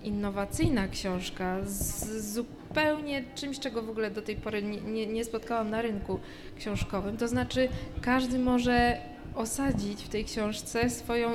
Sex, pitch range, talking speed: female, 215-255 Hz, 135 wpm